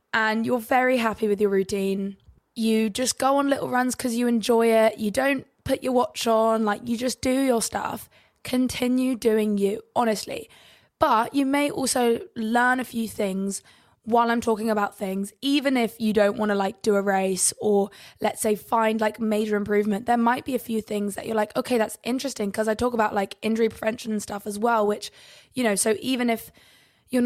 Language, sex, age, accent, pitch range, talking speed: English, female, 20-39, British, 205-245 Hz, 205 wpm